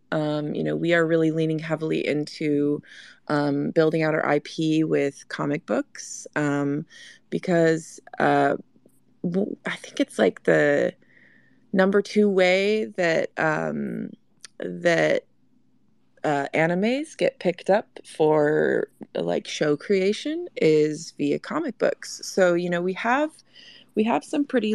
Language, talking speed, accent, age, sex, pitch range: English, 130 wpm, American, 20-39, female, 155-205 Hz